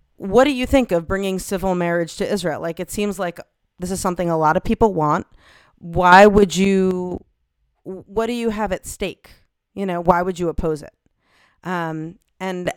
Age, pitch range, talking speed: 30-49, 170-210 Hz, 190 wpm